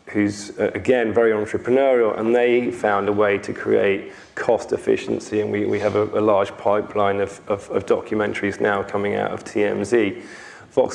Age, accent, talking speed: 20-39, British, 175 wpm